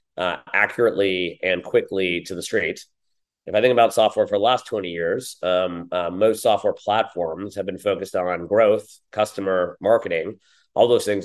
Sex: male